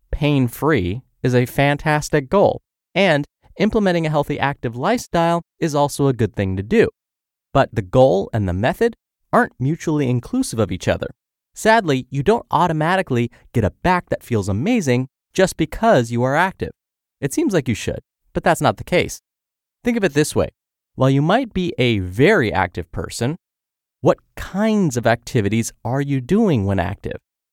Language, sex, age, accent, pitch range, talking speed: English, male, 30-49, American, 120-180 Hz, 170 wpm